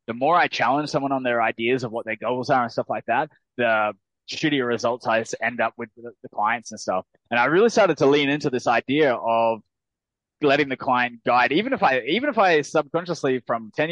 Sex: male